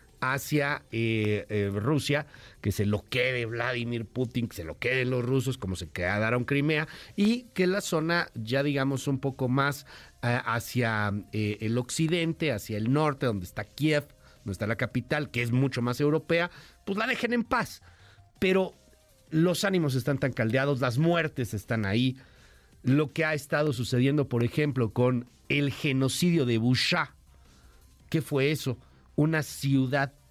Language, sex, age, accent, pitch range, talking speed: Spanish, male, 50-69, Mexican, 115-155 Hz, 160 wpm